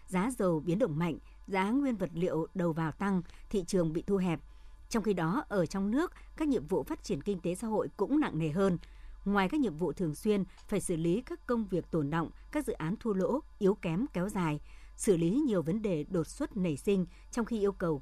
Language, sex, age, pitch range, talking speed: Vietnamese, male, 60-79, 170-230 Hz, 240 wpm